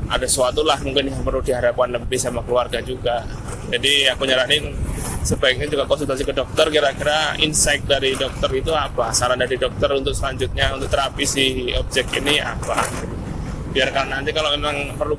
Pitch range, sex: 125-160 Hz, male